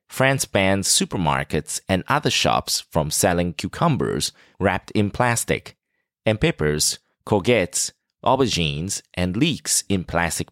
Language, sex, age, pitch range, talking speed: English, male, 30-49, 85-115 Hz, 115 wpm